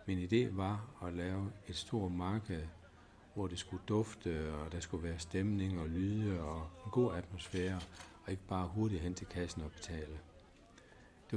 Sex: male